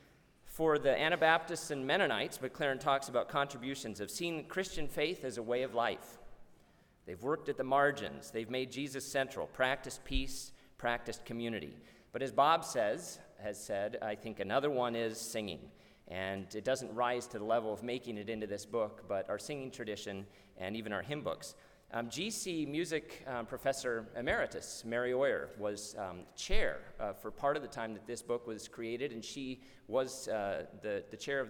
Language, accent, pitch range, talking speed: English, American, 115-140 Hz, 185 wpm